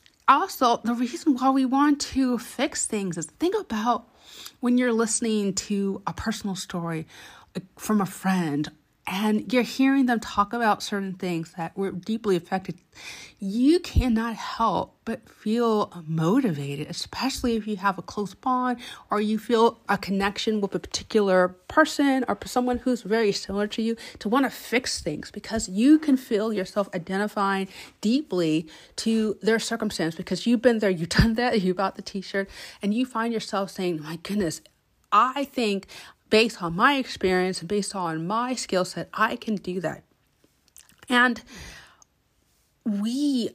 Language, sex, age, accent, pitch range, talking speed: English, female, 30-49, American, 190-240 Hz, 155 wpm